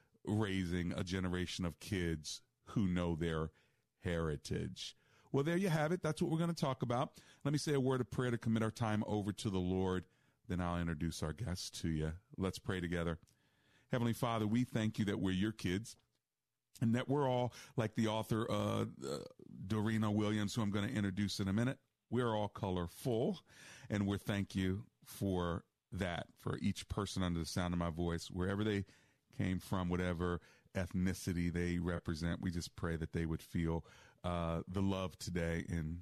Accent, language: American, English